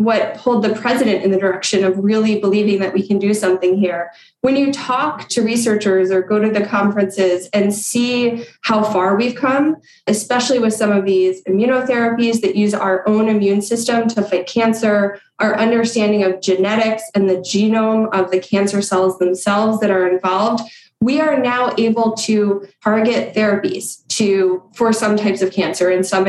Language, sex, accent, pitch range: English, female, American, 190-230 Hz